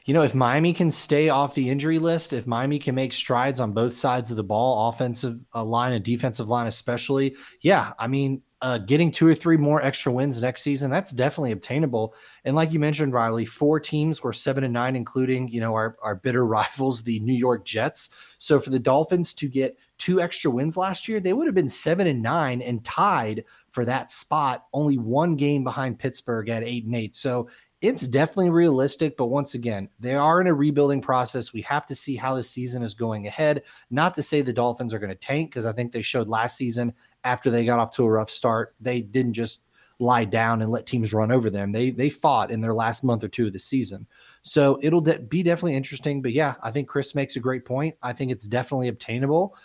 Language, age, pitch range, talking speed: English, 20-39, 120-145 Hz, 225 wpm